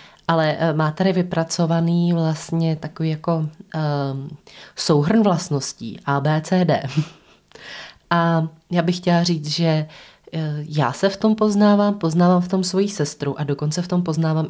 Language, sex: Czech, female